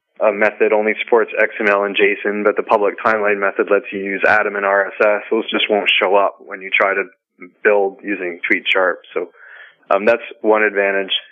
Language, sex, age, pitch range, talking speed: English, male, 20-39, 100-110 Hz, 185 wpm